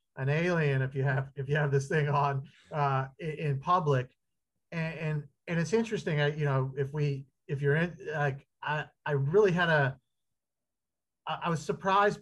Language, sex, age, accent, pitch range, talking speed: English, male, 40-59, American, 135-160 Hz, 180 wpm